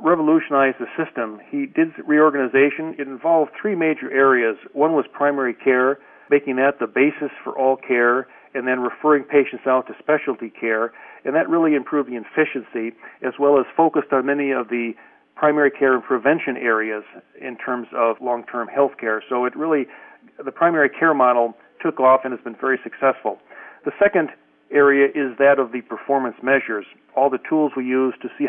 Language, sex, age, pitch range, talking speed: English, male, 50-69, 125-145 Hz, 180 wpm